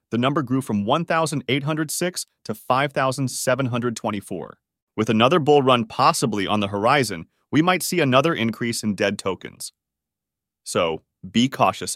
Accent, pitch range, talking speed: American, 105-145 Hz, 130 wpm